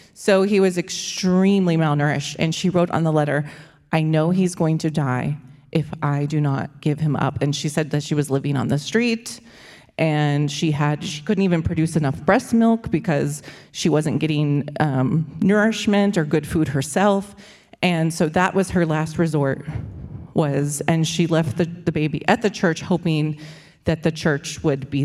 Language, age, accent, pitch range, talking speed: English, 30-49, American, 150-185 Hz, 185 wpm